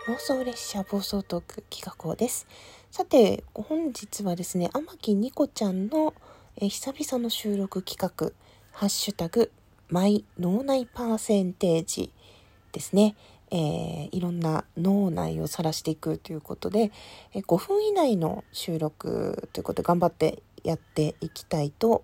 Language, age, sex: Japanese, 40-59, female